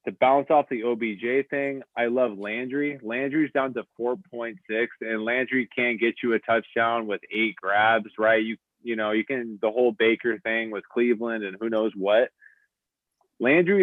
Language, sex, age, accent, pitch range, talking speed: English, male, 20-39, American, 105-125 Hz, 180 wpm